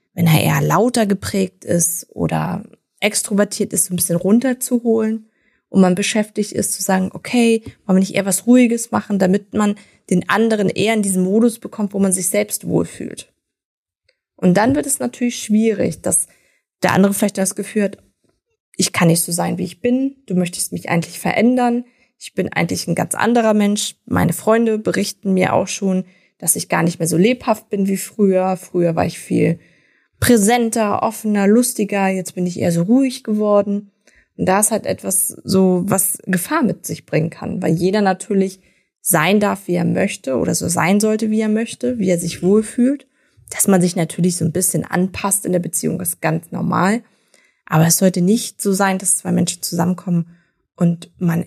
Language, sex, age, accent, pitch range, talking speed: German, female, 20-39, German, 180-220 Hz, 190 wpm